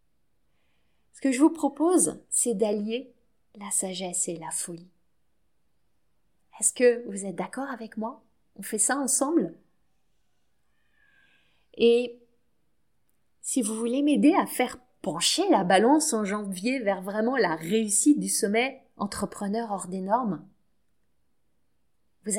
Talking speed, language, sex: 125 wpm, French, female